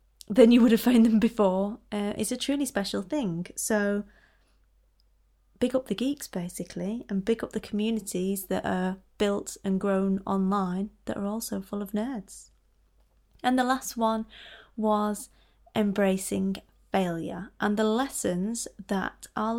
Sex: female